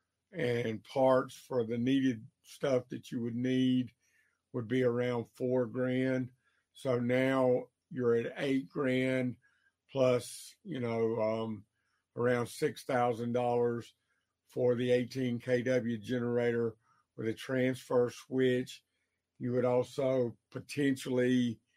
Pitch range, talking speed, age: 115-130 Hz, 110 wpm, 50-69